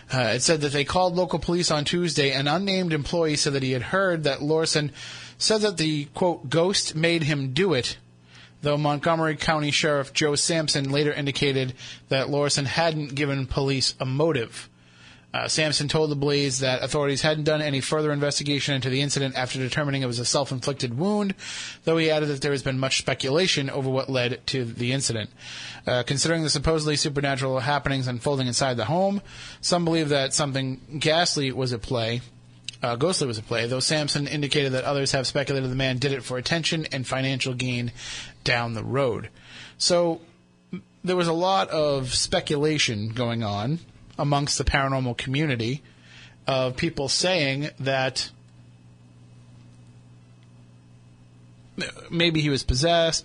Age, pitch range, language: 30-49, 125-150 Hz, English